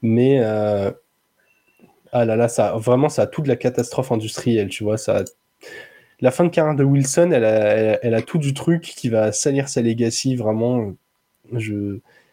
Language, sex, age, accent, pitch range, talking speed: French, male, 20-39, French, 115-140 Hz, 195 wpm